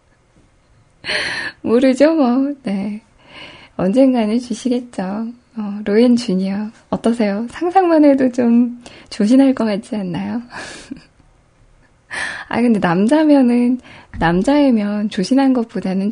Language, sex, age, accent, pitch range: Korean, female, 10-29, native, 195-260 Hz